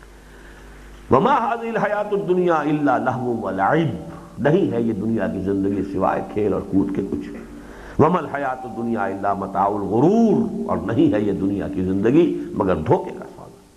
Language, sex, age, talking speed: Urdu, male, 60-79, 160 wpm